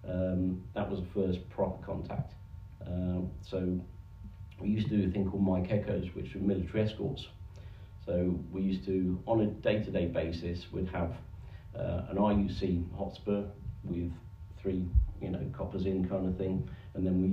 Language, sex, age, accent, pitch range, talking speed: English, male, 40-59, British, 90-100 Hz, 165 wpm